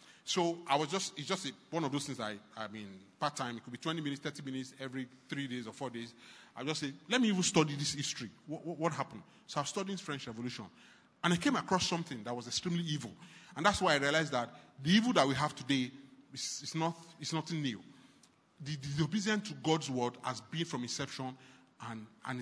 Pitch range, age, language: 130-165 Hz, 30-49, English